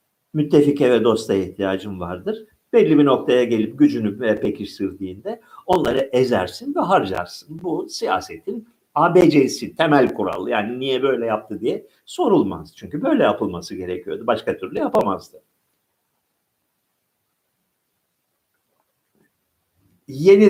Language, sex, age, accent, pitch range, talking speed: Turkish, male, 50-69, native, 105-180 Hz, 100 wpm